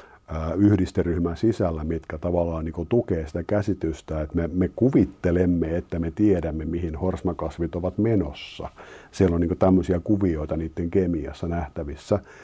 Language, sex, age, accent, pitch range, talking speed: Finnish, male, 50-69, native, 80-95 Hz, 140 wpm